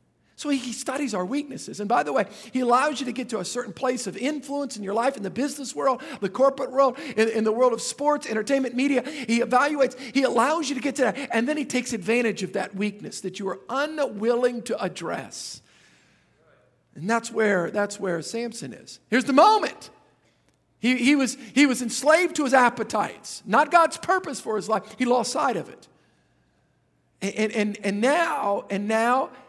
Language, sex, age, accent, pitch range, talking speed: English, male, 50-69, American, 210-265 Hz, 195 wpm